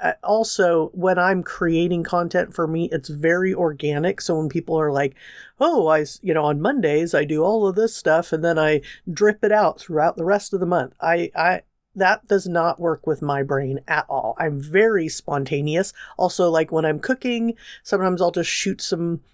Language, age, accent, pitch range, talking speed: English, 50-69, American, 160-200 Hz, 195 wpm